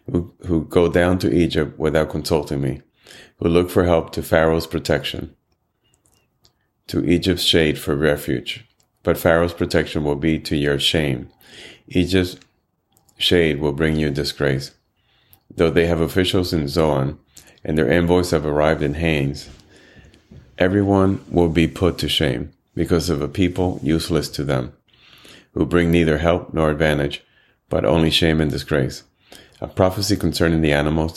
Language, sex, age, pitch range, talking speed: English, male, 30-49, 75-90 Hz, 145 wpm